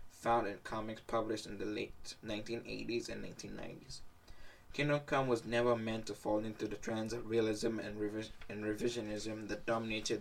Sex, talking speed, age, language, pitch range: male, 145 wpm, 10-29, English, 105-120 Hz